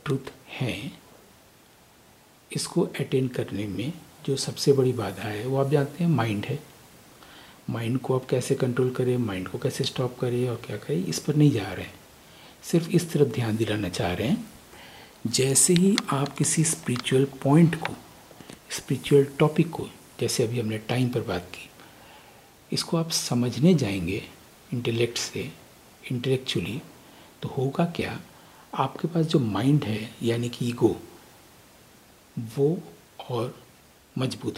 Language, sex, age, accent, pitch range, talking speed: English, male, 60-79, Indian, 115-145 Hz, 125 wpm